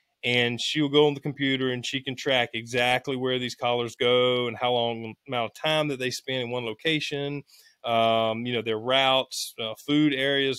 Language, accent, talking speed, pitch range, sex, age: English, American, 205 wpm, 115-140 Hz, male, 30-49